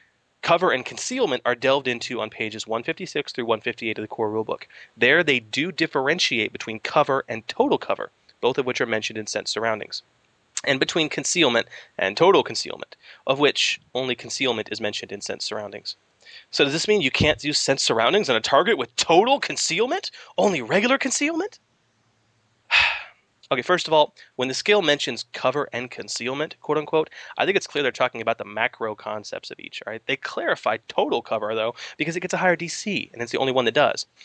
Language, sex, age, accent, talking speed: English, male, 30-49, American, 190 wpm